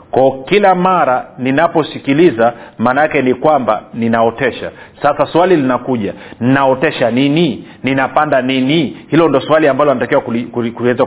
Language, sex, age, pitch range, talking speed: Swahili, male, 40-59, 130-160 Hz, 115 wpm